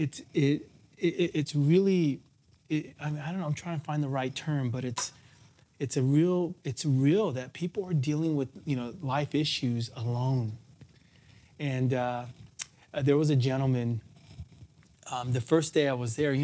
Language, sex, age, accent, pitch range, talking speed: English, male, 30-49, American, 125-145 Hz, 180 wpm